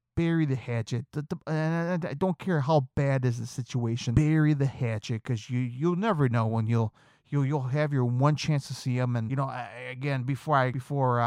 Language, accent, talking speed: English, American, 225 wpm